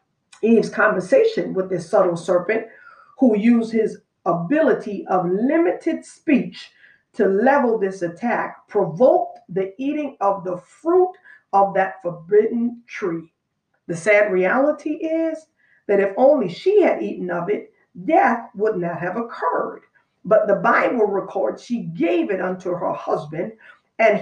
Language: English